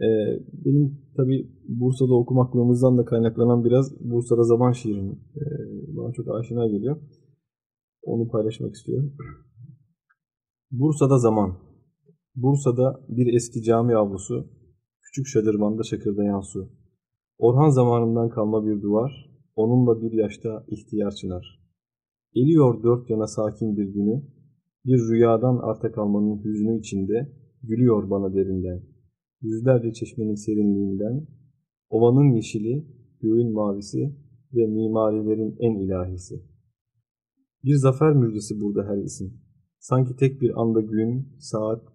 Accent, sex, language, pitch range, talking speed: native, male, Turkish, 110-135 Hz, 110 wpm